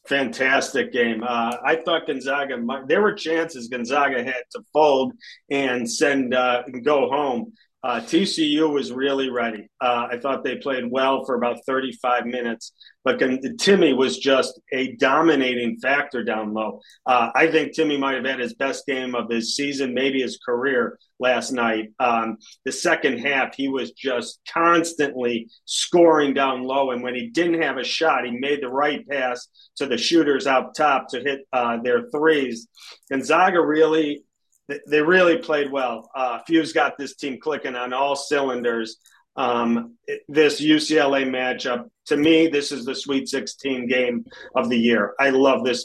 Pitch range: 125-150 Hz